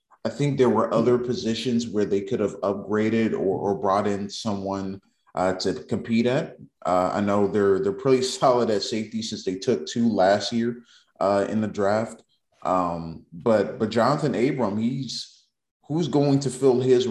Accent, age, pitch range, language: American, 30-49, 100-125 Hz, English